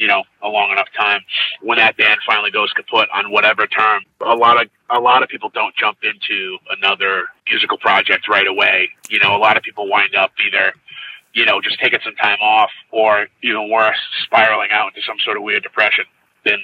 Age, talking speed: 30-49, 215 wpm